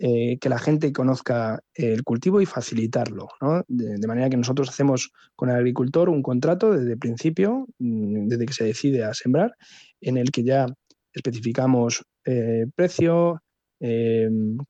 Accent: Spanish